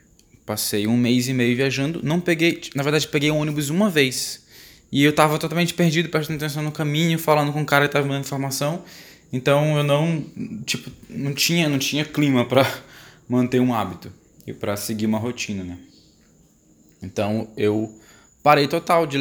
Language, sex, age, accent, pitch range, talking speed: Portuguese, male, 10-29, Brazilian, 110-150 Hz, 175 wpm